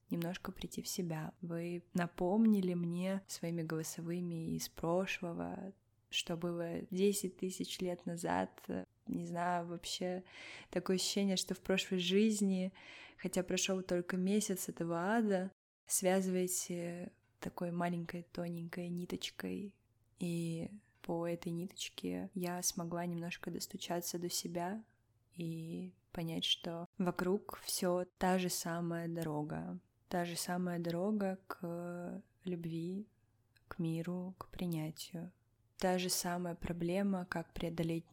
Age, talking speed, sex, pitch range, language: 20-39, 115 wpm, female, 165-185 Hz, Russian